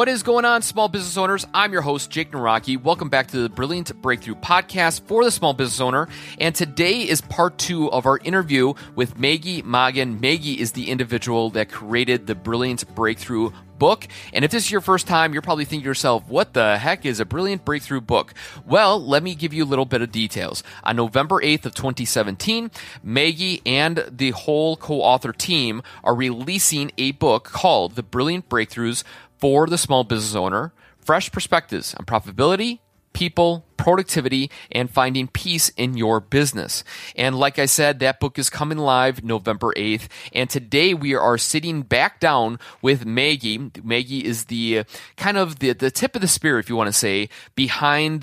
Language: English